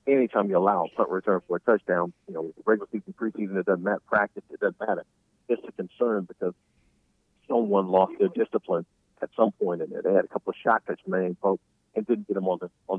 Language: English